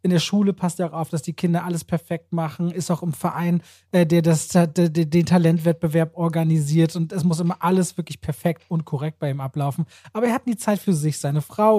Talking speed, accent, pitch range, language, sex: 230 wpm, German, 160-195 Hz, German, male